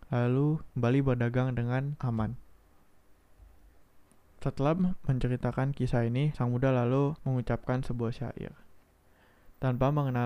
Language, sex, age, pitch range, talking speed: Indonesian, male, 20-39, 115-135 Hz, 95 wpm